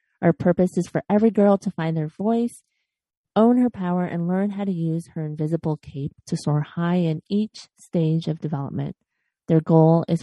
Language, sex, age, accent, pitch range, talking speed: English, female, 30-49, American, 155-195 Hz, 190 wpm